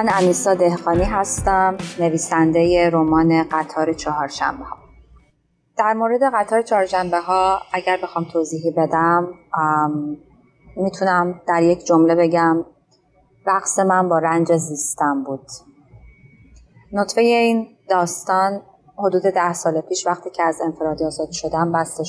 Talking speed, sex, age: 120 wpm, female, 30-49